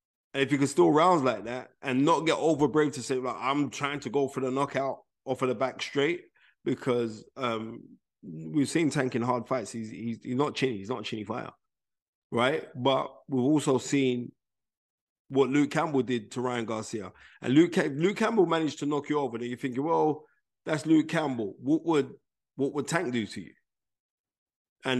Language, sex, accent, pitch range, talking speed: English, male, British, 120-150 Hz, 200 wpm